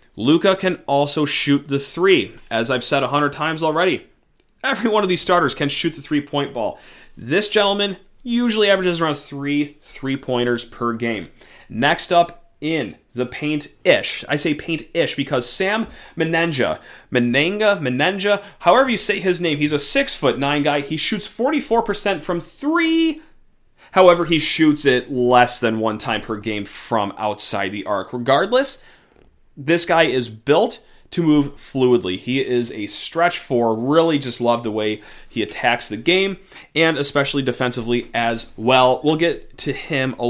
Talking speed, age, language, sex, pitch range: 150 wpm, 30-49, English, male, 120-175 Hz